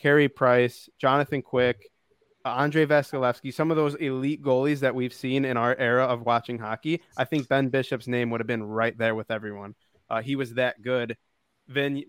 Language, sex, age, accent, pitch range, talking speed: English, male, 20-39, American, 120-140 Hz, 195 wpm